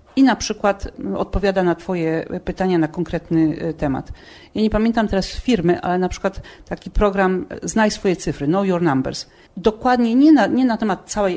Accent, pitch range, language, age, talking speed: native, 180-225 Hz, Polish, 40-59, 175 wpm